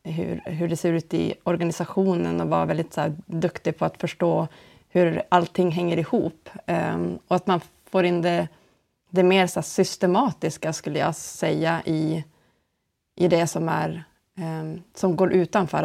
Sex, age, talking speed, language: female, 30-49, 160 wpm, Swedish